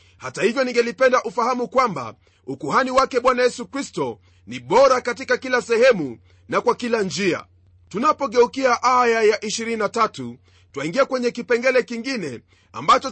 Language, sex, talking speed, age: Swahili, male, 130 wpm, 40-59